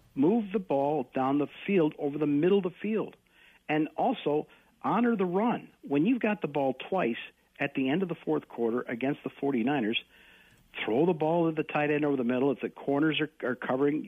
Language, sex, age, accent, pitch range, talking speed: English, male, 50-69, American, 125-165 Hz, 210 wpm